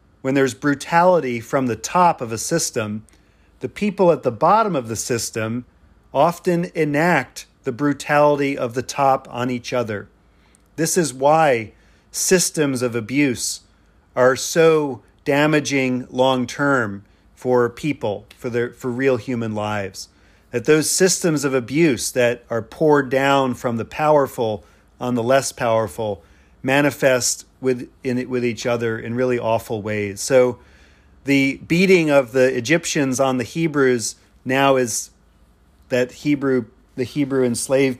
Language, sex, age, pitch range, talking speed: English, male, 40-59, 105-135 Hz, 135 wpm